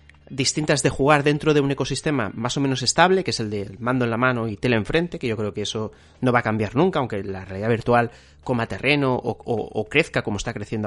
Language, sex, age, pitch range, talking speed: Spanish, male, 30-49, 110-140 Hz, 250 wpm